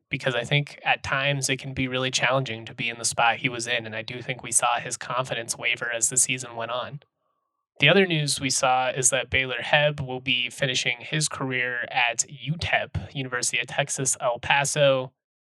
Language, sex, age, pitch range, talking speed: English, male, 20-39, 120-140 Hz, 205 wpm